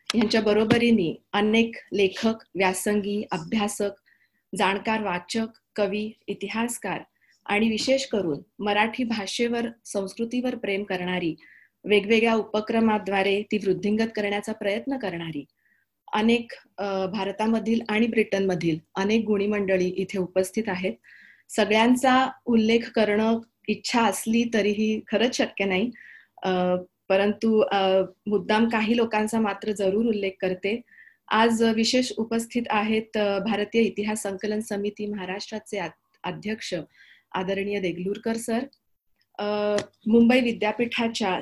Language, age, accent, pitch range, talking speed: Marathi, 30-49, native, 195-225 Hz, 95 wpm